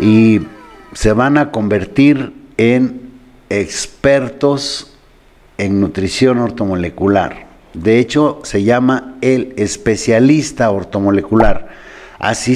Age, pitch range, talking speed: 50-69, 110-140 Hz, 85 wpm